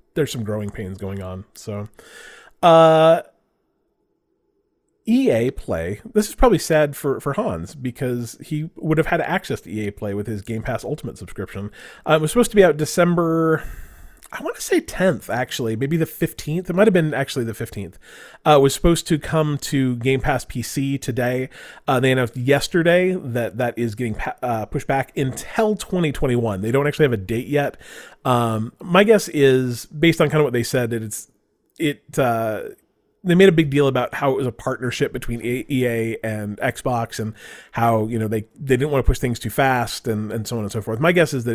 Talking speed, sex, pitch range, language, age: 205 wpm, male, 110-160 Hz, English, 30-49